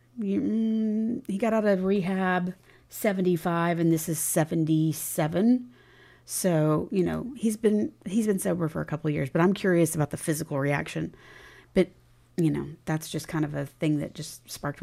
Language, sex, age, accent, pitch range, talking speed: English, female, 30-49, American, 155-185 Hz, 165 wpm